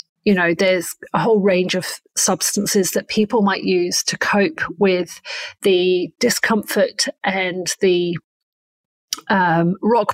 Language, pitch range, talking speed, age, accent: English, 185-220 Hz, 125 wpm, 40-59, British